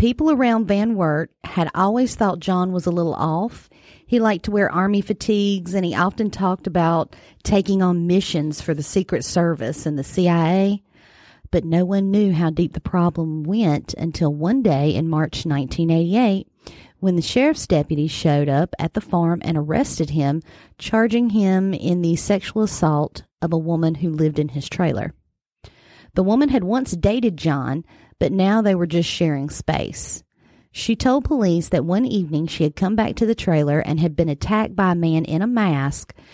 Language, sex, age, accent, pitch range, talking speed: English, female, 40-59, American, 155-200 Hz, 180 wpm